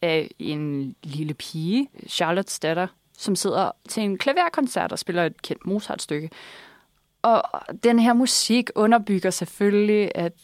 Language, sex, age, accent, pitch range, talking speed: Danish, female, 20-39, native, 205-285 Hz, 130 wpm